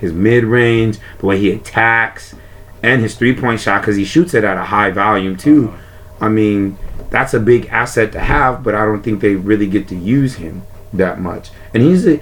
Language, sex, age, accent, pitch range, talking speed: English, male, 30-49, American, 100-115 Hz, 195 wpm